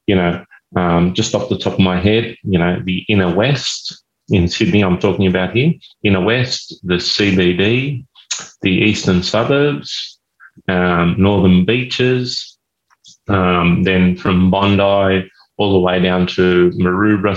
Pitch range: 90-105 Hz